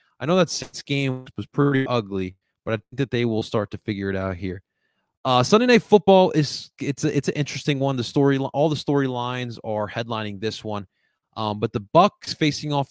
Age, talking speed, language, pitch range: 20-39, 215 wpm, English, 110-135 Hz